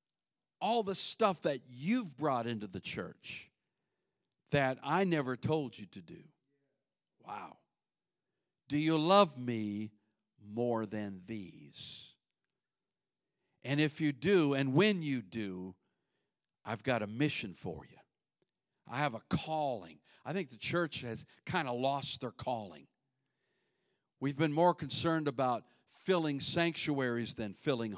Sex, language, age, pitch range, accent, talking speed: male, English, 50-69, 120-155 Hz, American, 130 wpm